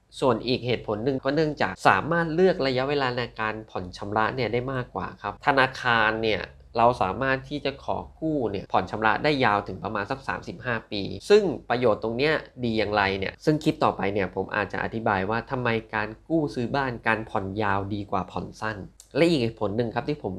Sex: male